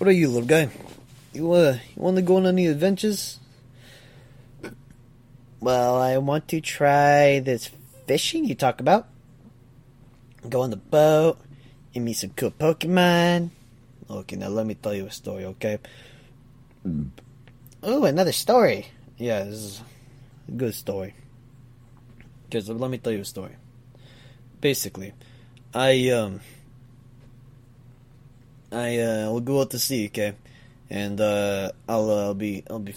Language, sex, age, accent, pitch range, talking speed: English, male, 20-39, American, 120-135 Hz, 140 wpm